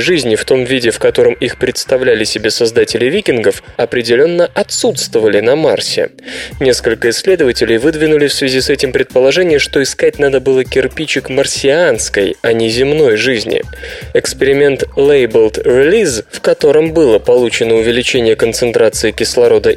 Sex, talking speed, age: male, 130 wpm, 20-39